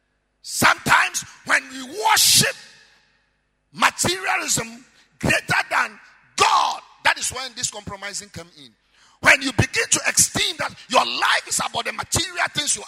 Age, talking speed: 50-69, 135 wpm